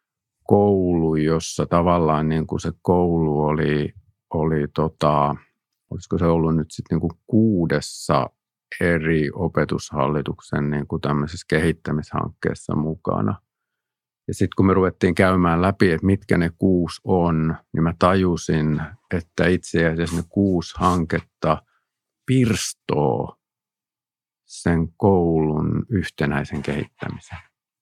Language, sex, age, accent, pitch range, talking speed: Finnish, male, 50-69, native, 80-90 Hz, 105 wpm